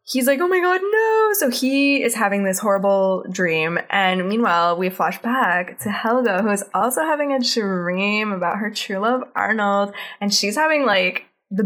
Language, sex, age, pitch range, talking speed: English, female, 10-29, 175-225 Hz, 185 wpm